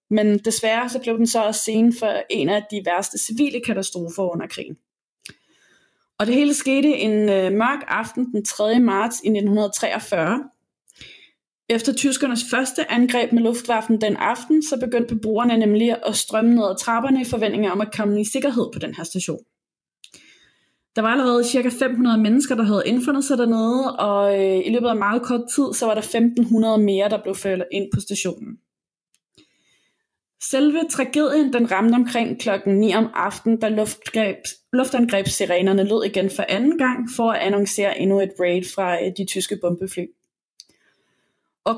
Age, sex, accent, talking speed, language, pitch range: 20-39, female, native, 165 wpm, Danish, 200-245 Hz